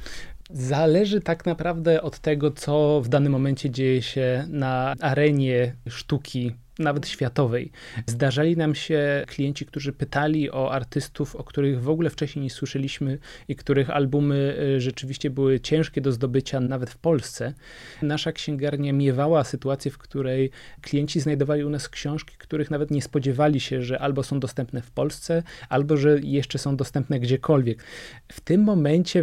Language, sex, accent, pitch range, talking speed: Polish, male, native, 135-150 Hz, 150 wpm